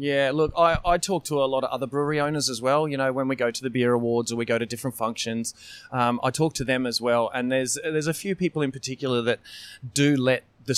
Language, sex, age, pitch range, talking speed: English, male, 20-39, 120-140 Hz, 265 wpm